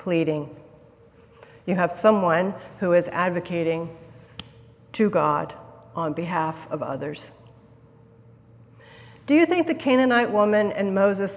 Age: 50-69